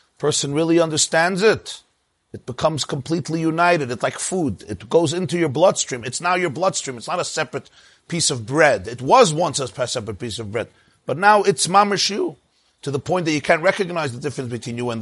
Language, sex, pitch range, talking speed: English, male, 120-165 Hz, 210 wpm